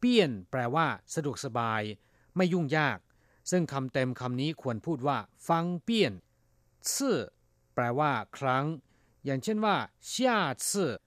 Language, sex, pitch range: Thai, male, 115-170 Hz